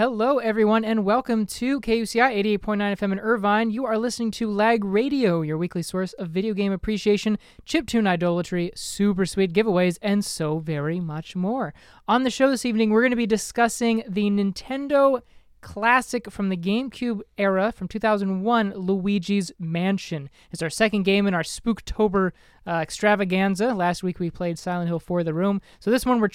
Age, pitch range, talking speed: 20-39, 180-225 Hz, 175 wpm